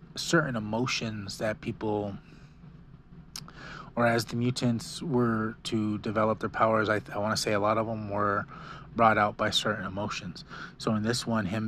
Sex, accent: male, American